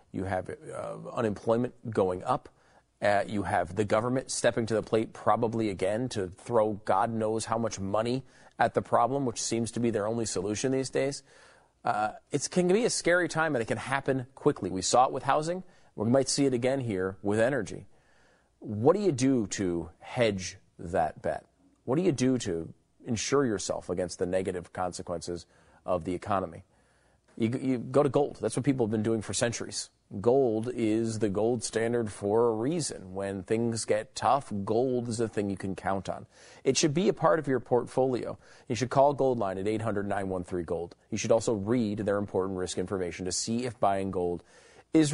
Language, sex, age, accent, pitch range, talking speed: English, male, 40-59, American, 100-135 Hz, 190 wpm